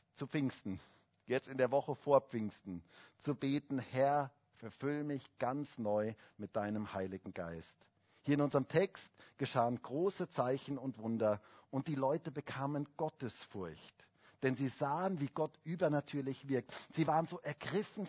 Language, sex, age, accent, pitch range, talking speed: German, male, 50-69, German, 130-175 Hz, 145 wpm